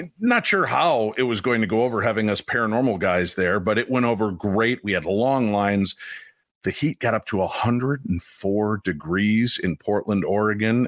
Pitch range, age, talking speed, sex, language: 100-130 Hz, 50-69, 180 wpm, male, English